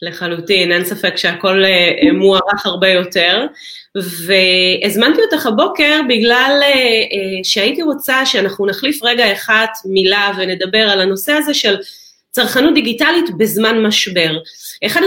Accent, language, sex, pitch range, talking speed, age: native, Hebrew, female, 200-270 Hz, 110 wpm, 30-49